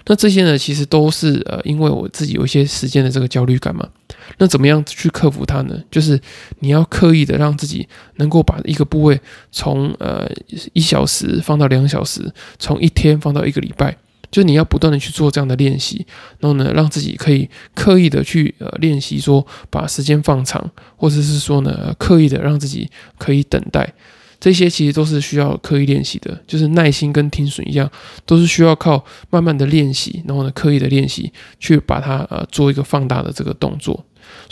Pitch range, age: 140-155 Hz, 20-39